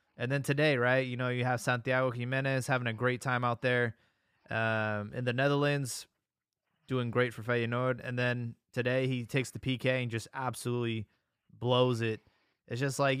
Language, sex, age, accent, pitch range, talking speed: English, male, 20-39, American, 115-140 Hz, 180 wpm